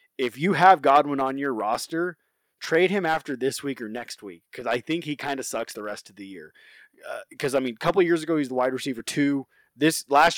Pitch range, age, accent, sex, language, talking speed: 120-150 Hz, 20-39, American, male, English, 250 wpm